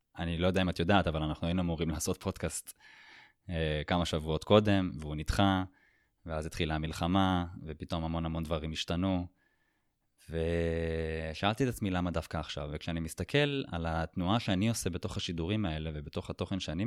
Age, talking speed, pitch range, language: 20-39, 155 wpm, 85-105 Hz, Hebrew